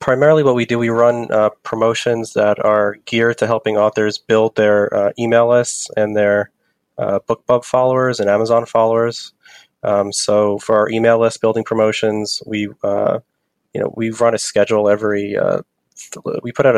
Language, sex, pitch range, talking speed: English, male, 105-115 Hz, 175 wpm